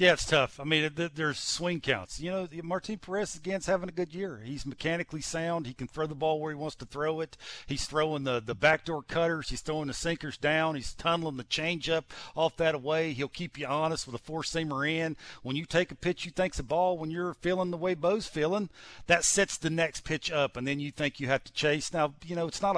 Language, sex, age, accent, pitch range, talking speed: English, male, 50-69, American, 140-175 Hz, 250 wpm